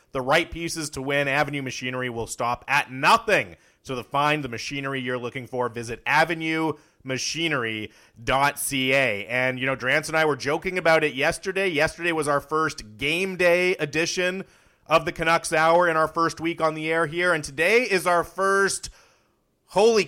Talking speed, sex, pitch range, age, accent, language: 170 wpm, male, 130-175 Hz, 30-49, American, English